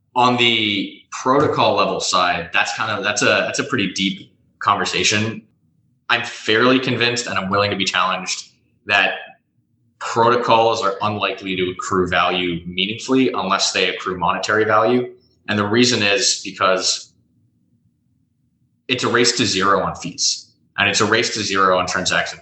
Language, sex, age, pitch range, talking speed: English, male, 20-39, 95-120 Hz, 155 wpm